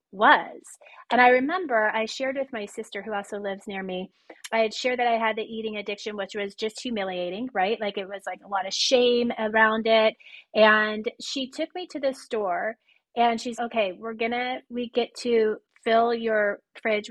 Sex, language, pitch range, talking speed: female, English, 210-250 Hz, 195 wpm